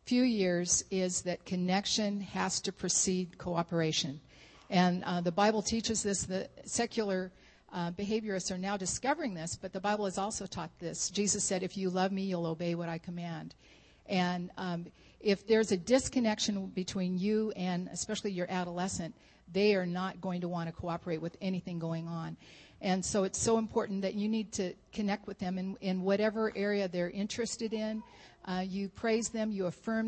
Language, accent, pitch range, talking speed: English, American, 180-210 Hz, 180 wpm